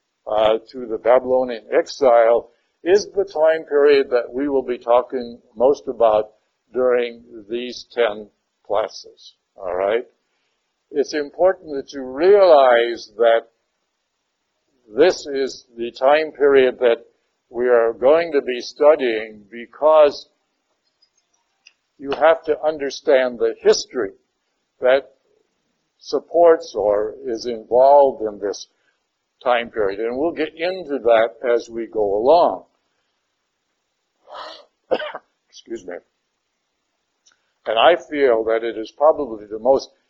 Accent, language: American, English